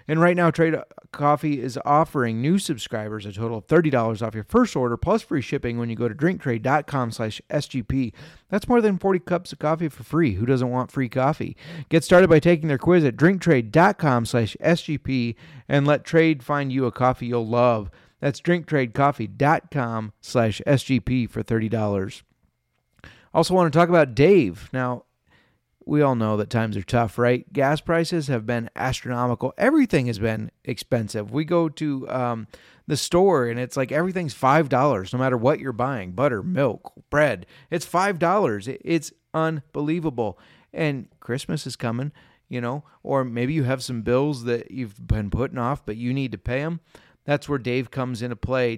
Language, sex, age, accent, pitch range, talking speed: English, male, 30-49, American, 120-155 Hz, 165 wpm